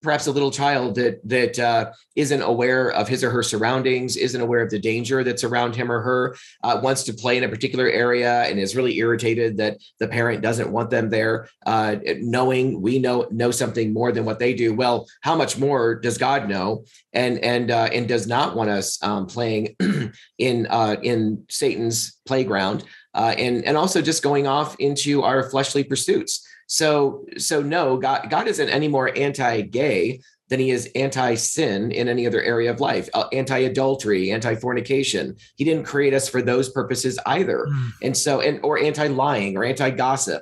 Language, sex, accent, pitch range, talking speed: English, male, American, 115-135 Hz, 185 wpm